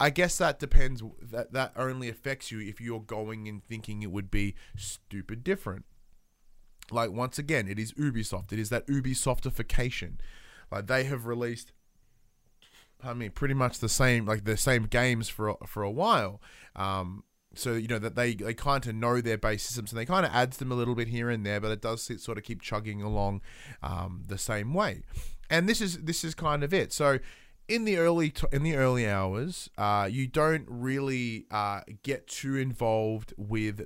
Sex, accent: male, Australian